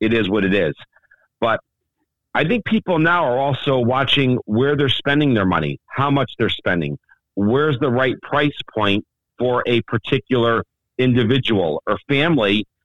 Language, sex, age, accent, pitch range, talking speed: English, male, 50-69, American, 115-145 Hz, 155 wpm